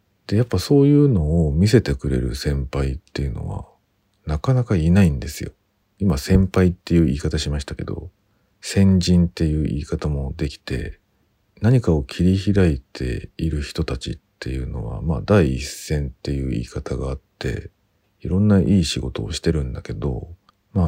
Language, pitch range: Japanese, 75-100 Hz